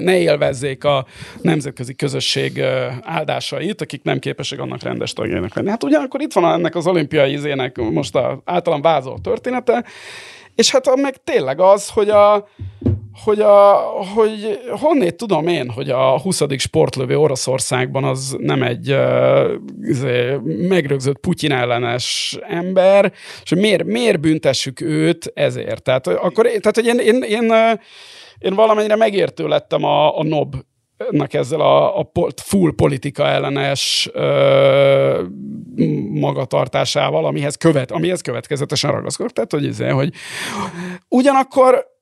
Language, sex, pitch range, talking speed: Hungarian, male, 135-220 Hz, 125 wpm